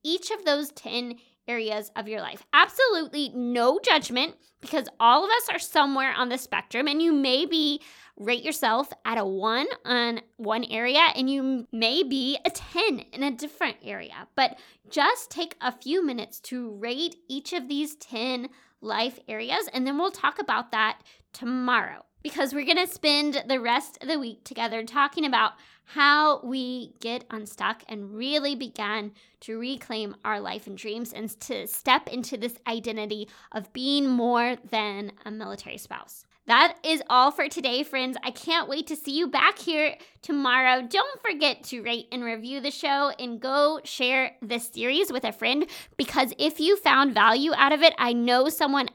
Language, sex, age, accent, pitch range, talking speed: English, female, 20-39, American, 235-300 Hz, 175 wpm